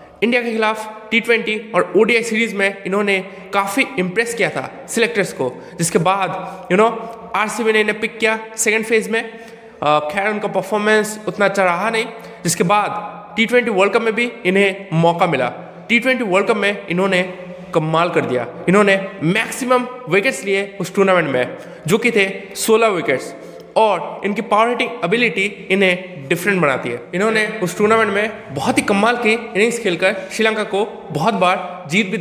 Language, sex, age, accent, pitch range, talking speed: Hindi, male, 20-39, native, 175-225 Hz, 165 wpm